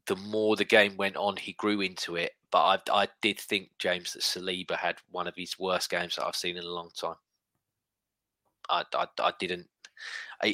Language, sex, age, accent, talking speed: English, male, 20-39, British, 205 wpm